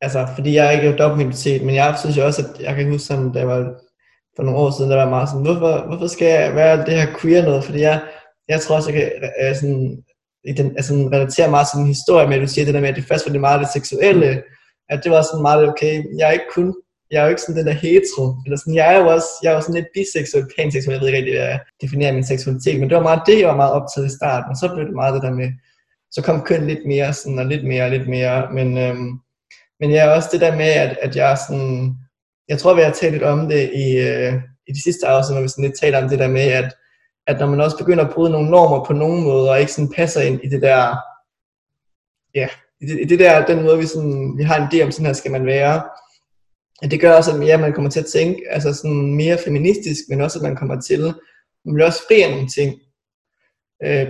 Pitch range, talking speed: 135-155 Hz, 265 wpm